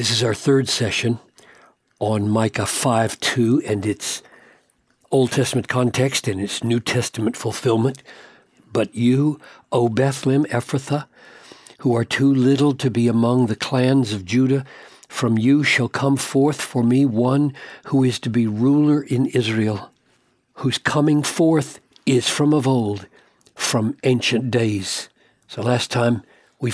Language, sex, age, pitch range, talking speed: English, male, 60-79, 120-150 Hz, 140 wpm